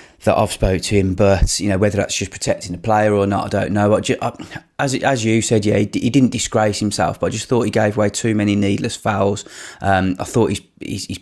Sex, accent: male, British